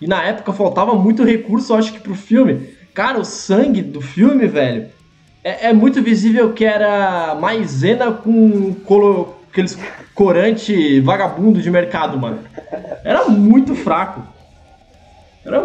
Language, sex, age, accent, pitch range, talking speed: Portuguese, male, 20-39, Brazilian, 140-220 Hz, 140 wpm